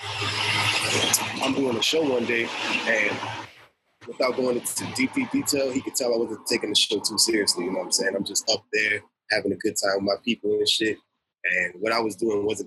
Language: English